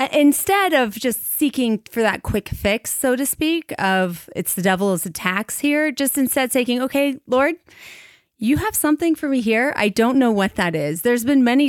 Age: 30-49